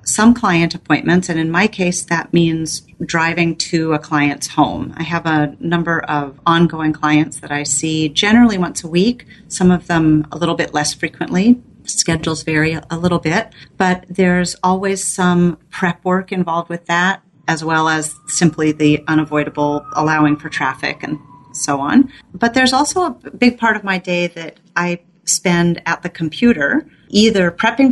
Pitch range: 150-180 Hz